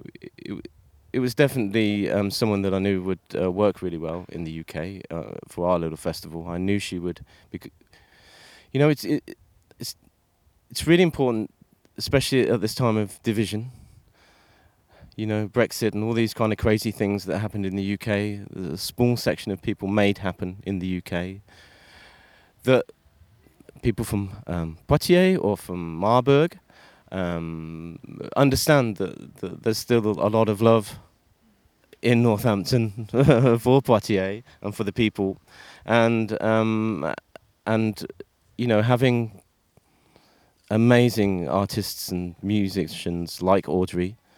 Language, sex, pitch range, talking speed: French, male, 90-115 Hz, 140 wpm